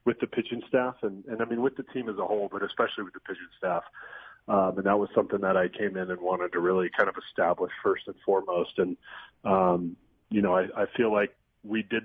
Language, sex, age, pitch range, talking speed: English, male, 30-49, 100-115 Hz, 245 wpm